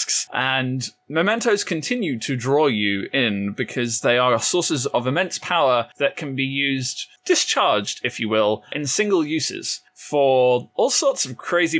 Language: English